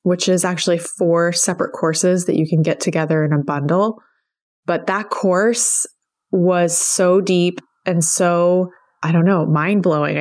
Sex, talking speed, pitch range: female, 160 wpm, 160-190 Hz